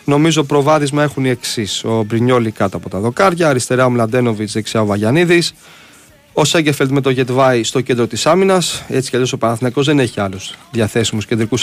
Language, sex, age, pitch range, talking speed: Greek, male, 30-49, 110-140 Hz, 185 wpm